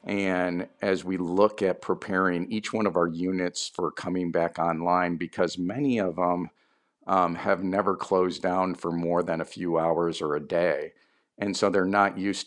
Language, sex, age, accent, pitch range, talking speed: English, male, 50-69, American, 85-95 Hz, 185 wpm